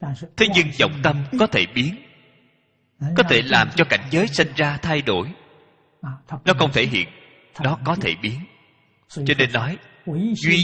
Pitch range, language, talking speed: 125-170 Hz, Vietnamese, 165 wpm